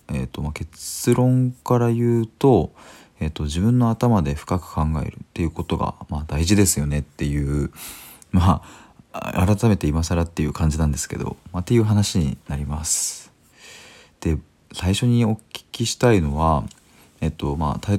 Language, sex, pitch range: Japanese, male, 75-100 Hz